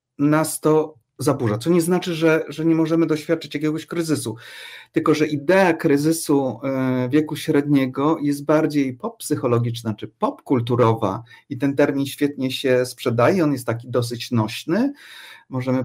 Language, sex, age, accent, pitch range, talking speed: Polish, male, 50-69, native, 130-155 Hz, 140 wpm